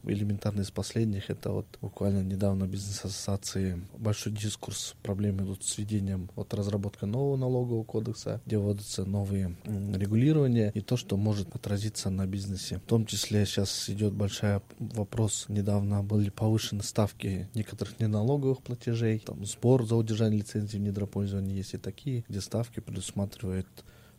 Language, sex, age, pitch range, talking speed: Russian, male, 20-39, 100-115 Hz, 145 wpm